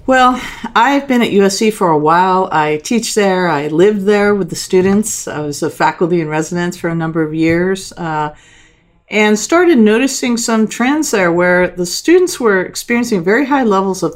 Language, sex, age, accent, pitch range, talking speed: English, female, 50-69, American, 160-225 Hz, 185 wpm